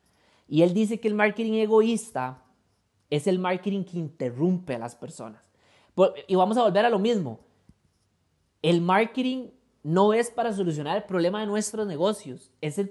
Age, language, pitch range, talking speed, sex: 20-39, Spanish, 155-215 Hz, 155 wpm, male